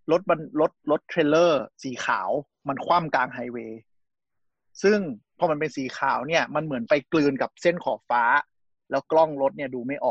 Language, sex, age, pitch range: Thai, male, 30-49, 135-170 Hz